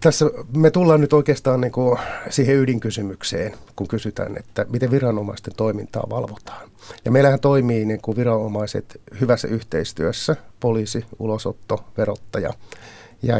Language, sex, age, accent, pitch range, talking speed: Finnish, male, 60-79, native, 110-140 Hz, 105 wpm